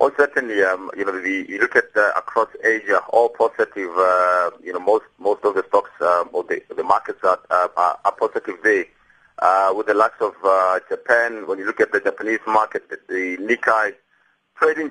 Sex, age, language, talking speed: male, 30-49, English, 205 wpm